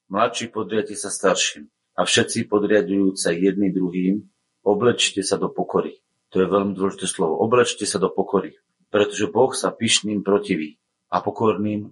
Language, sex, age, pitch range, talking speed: Slovak, male, 40-59, 90-105 Hz, 150 wpm